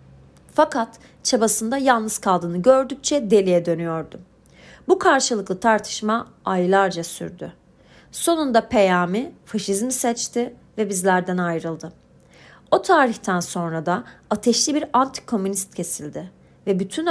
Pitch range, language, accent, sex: 180-245 Hz, Turkish, native, female